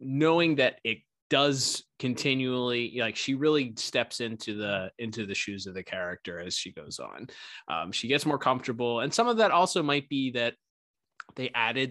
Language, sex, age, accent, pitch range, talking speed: English, male, 20-39, American, 105-130 Hz, 180 wpm